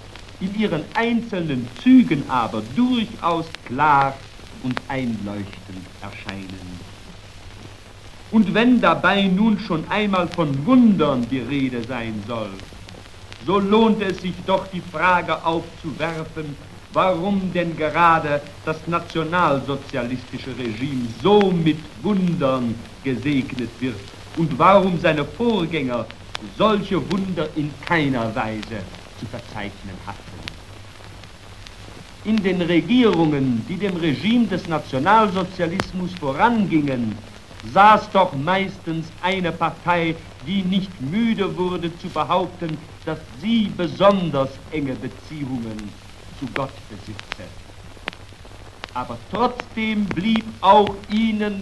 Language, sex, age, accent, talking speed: English, male, 60-79, German, 95 wpm